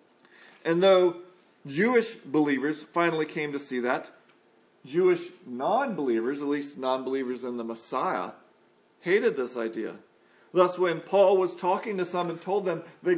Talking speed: 140 wpm